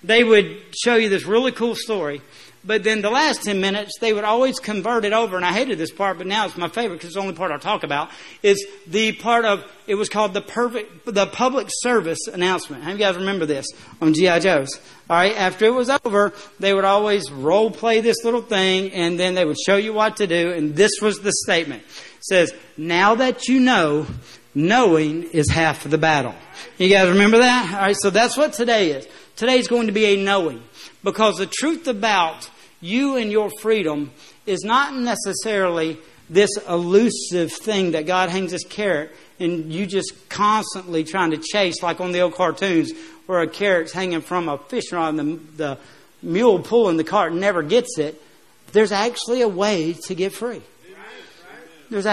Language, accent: English, American